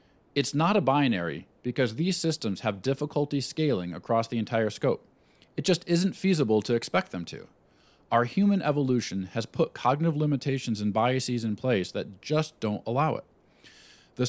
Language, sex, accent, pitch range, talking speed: English, male, American, 105-145 Hz, 165 wpm